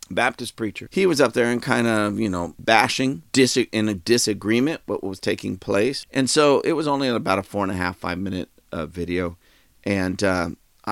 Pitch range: 95-110 Hz